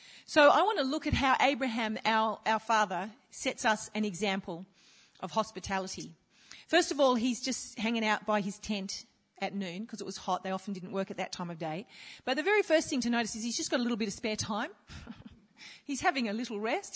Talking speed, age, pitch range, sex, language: 225 wpm, 40-59, 210-265 Hz, female, English